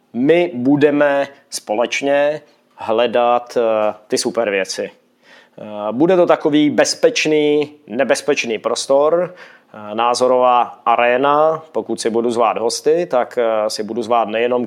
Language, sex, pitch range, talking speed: Czech, male, 120-145 Hz, 100 wpm